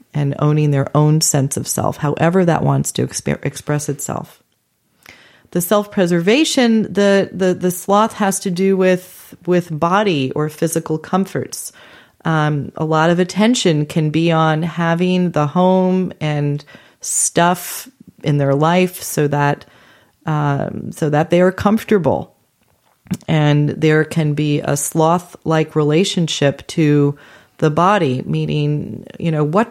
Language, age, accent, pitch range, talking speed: English, 30-49, American, 155-205 Hz, 135 wpm